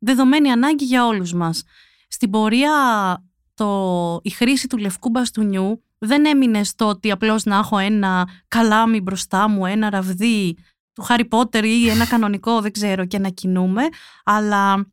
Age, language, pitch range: 20-39, Greek, 205-265 Hz